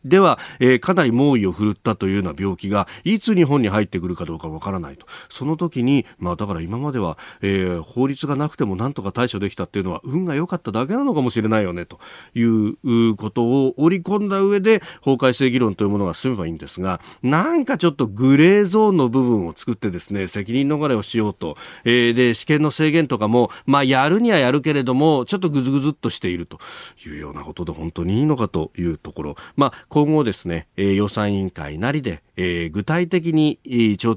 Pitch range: 100-150 Hz